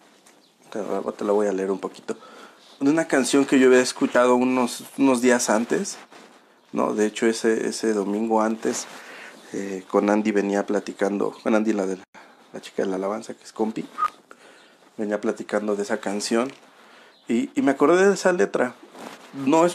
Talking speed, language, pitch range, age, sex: 170 wpm, Spanish, 105-130 Hz, 40-59, male